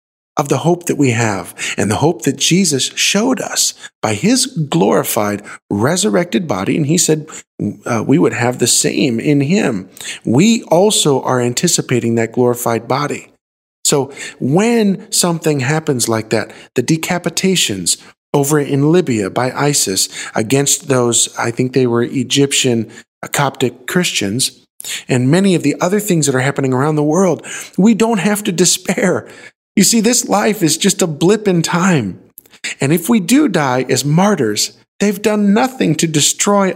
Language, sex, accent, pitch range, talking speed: English, male, American, 125-180 Hz, 160 wpm